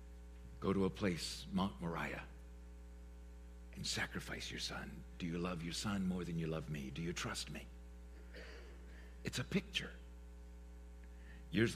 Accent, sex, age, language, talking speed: American, male, 60-79, English, 145 wpm